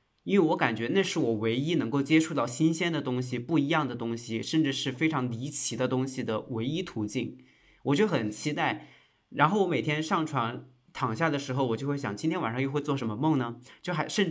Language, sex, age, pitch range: Chinese, male, 20-39, 120-160 Hz